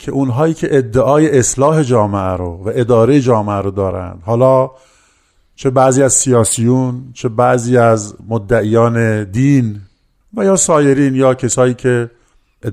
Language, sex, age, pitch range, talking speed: Persian, male, 50-69, 110-140 Hz, 130 wpm